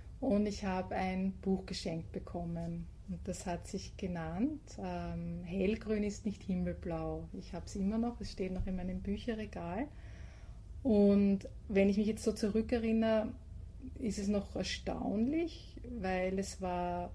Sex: female